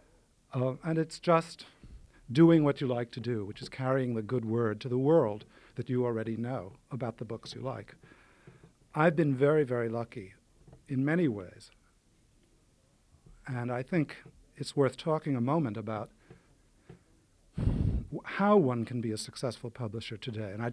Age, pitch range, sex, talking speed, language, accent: 60-79, 115-145 Hz, male, 160 wpm, English, American